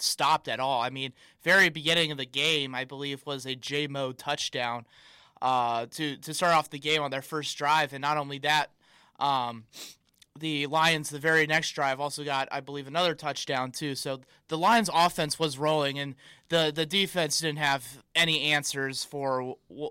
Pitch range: 135-175 Hz